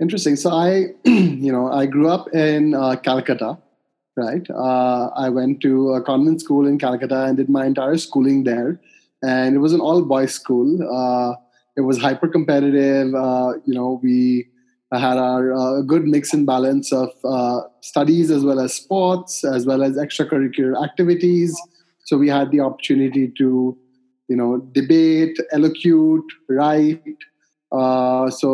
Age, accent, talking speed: 20-39, Indian, 150 wpm